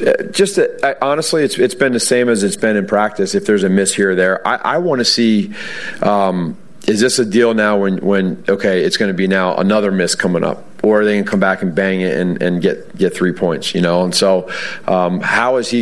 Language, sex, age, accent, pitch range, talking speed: English, male, 30-49, American, 95-115 Hz, 260 wpm